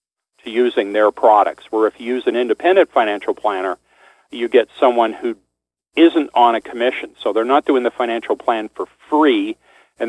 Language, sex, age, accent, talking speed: English, male, 50-69, American, 170 wpm